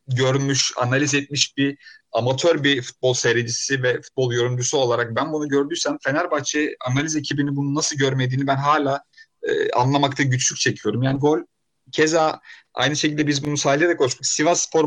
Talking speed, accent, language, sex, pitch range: 155 wpm, native, Turkish, male, 130-160 Hz